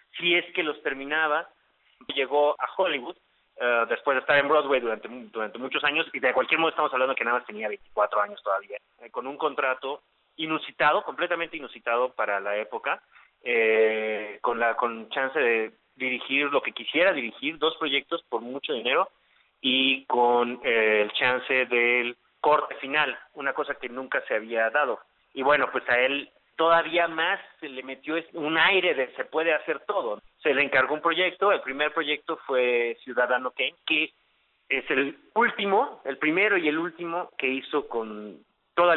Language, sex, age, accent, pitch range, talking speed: Spanish, male, 30-49, Mexican, 120-165 Hz, 175 wpm